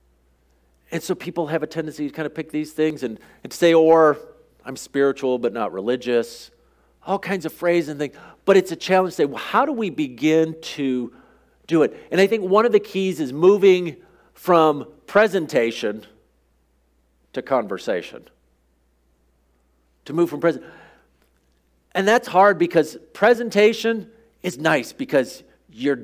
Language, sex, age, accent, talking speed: English, male, 50-69, American, 155 wpm